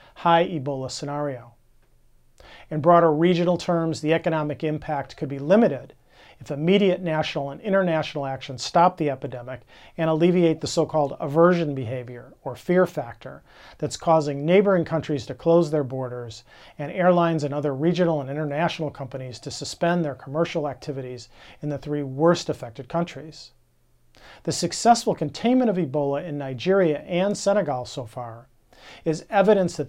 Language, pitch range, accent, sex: English, 135-170 Hz, American, male